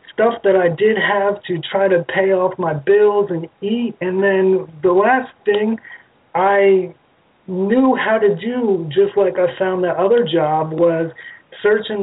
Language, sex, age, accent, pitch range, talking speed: English, male, 30-49, American, 170-200 Hz, 165 wpm